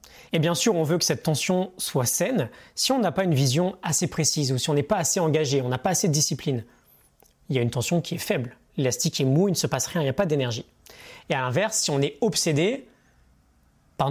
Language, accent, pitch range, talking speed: French, French, 135-175 Hz, 255 wpm